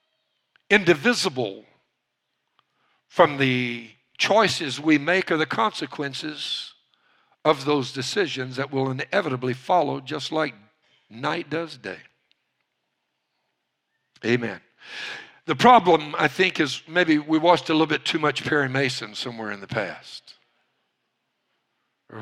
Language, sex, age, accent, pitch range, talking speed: English, male, 60-79, American, 145-215 Hz, 115 wpm